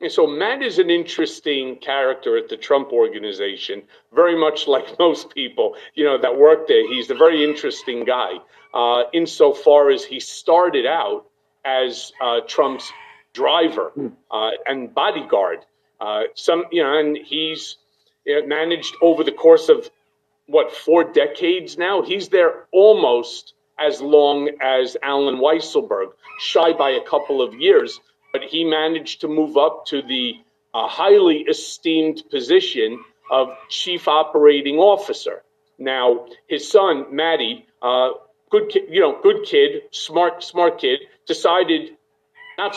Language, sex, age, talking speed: English, male, 50-69, 145 wpm